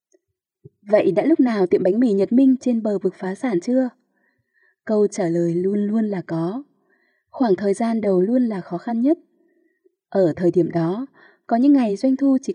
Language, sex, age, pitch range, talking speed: Vietnamese, female, 20-39, 185-275 Hz, 195 wpm